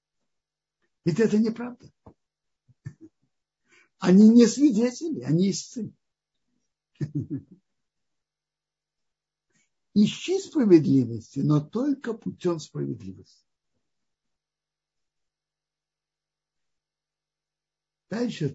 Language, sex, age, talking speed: Russian, male, 60-79, 50 wpm